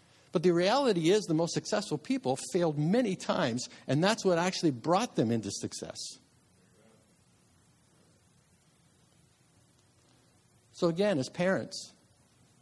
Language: English